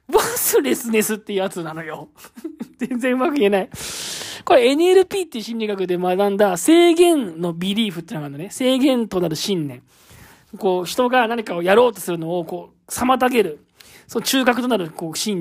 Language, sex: Japanese, male